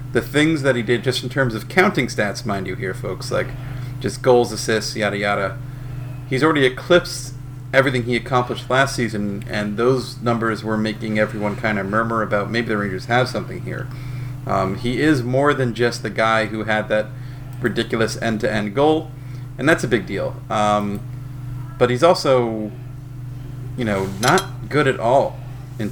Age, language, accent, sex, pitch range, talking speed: 30-49, English, American, male, 110-130 Hz, 175 wpm